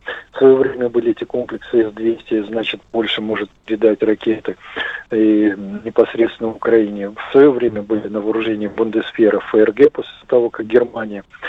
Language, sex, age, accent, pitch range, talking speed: Russian, male, 40-59, native, 110-130 Hz, 140 wpm